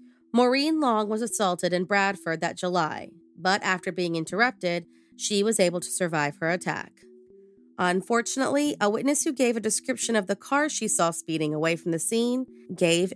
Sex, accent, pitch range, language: female, American, 170-235 Hz, English